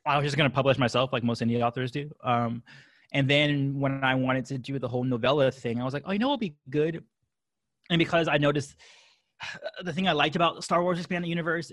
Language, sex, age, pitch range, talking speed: English, male, 20-39, 120-155 Hz, 245 wpm